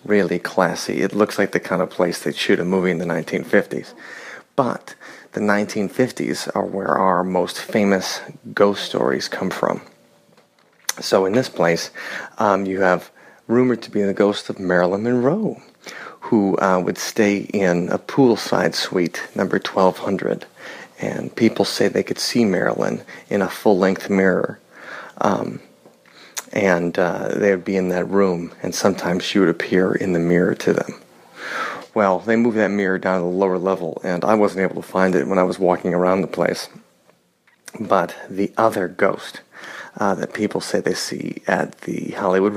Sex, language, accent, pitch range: male, English, American, 90-105 Hz